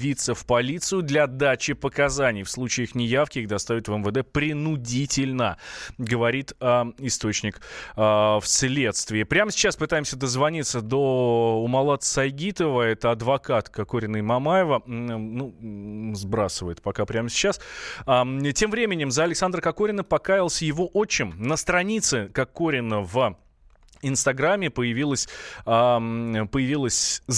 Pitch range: 115-150 Hz